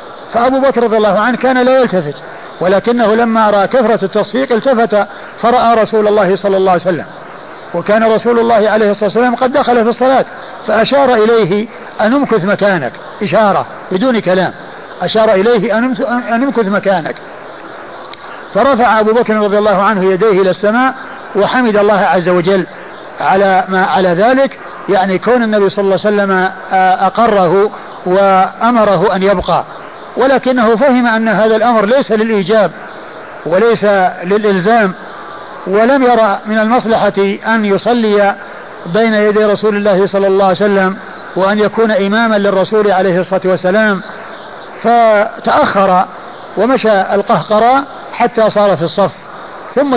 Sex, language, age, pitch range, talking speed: male, Arabic, 50-69, 195-230 Hz, 135 wpm